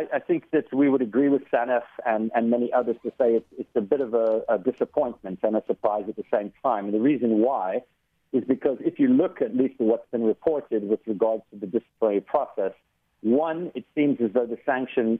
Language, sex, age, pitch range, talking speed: English, male, 50-69, 110-135 Hz, 220 wpm